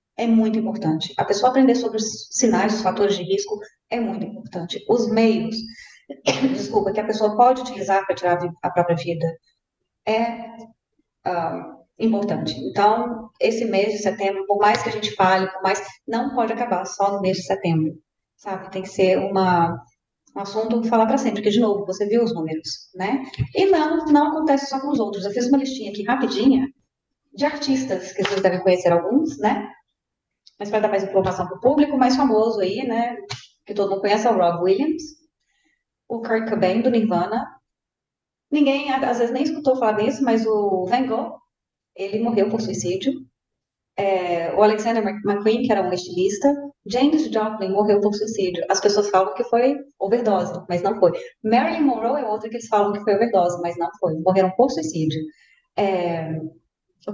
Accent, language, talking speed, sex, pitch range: Brazilian, Portuguese, 180 wpm, female, 190-240 Hz